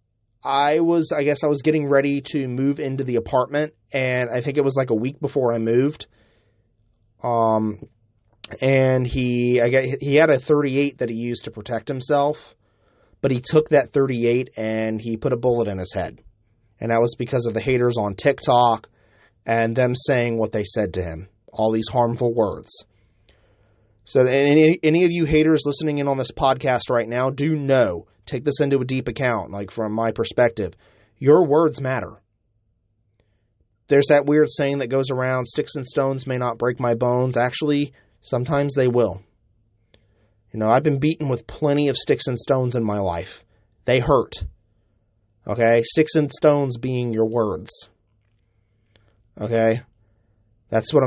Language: English